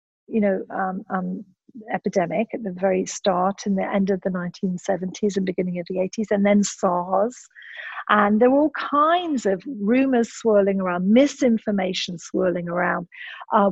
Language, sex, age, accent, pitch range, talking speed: English, female, 40-59, British, 200-245 Hz, 160 wpm